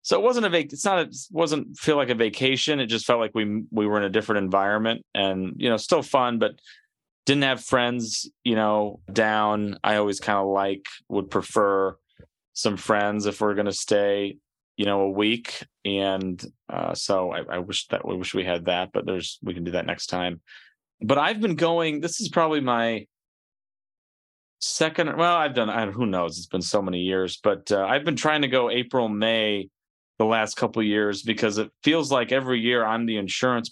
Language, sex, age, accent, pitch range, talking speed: English, male, 30-49, American, 100-125 Hz, 210 wpm